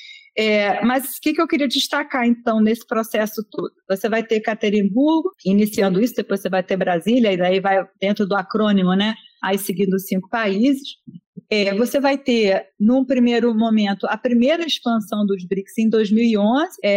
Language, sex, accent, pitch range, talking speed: Portuguese, female, Brazilian, 210-275 Hz, 165 wpm